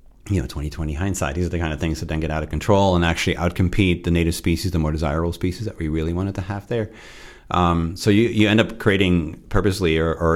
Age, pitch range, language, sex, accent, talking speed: 40-59, 80-90 Hz, English, male, American, 255 wpm